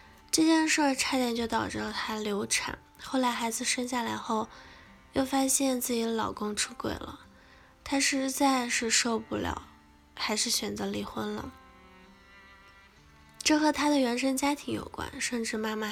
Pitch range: 200-265 Hz